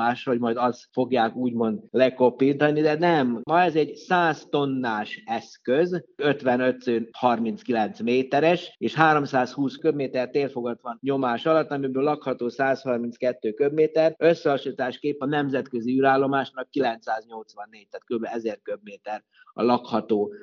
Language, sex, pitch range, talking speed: Hungarian, male, 120-155 Hz, 115 wpm